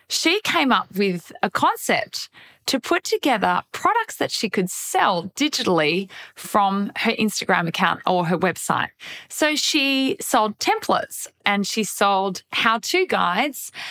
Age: 20-39